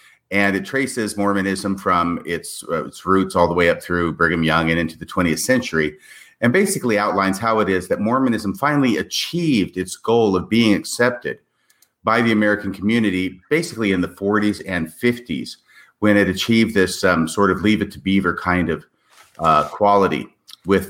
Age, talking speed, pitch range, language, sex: 40-59, 180 wpm, 85-100 Hz, English, male